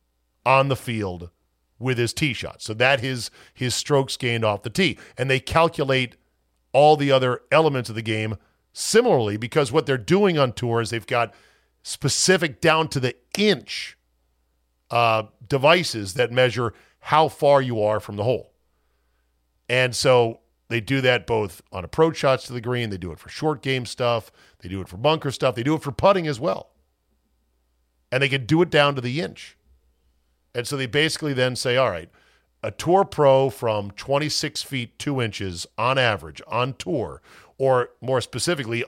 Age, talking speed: 40-59, 175 wpm